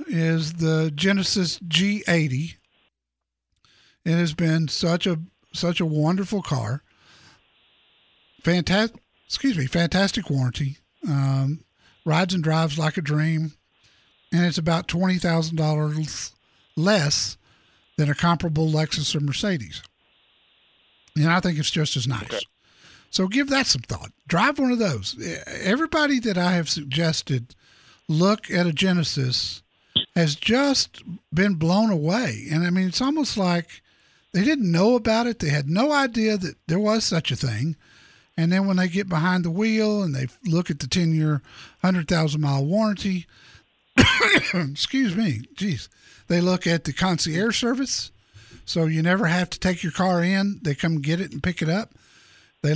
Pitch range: 150-190 Hz